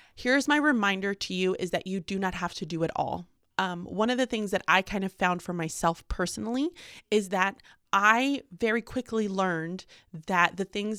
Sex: female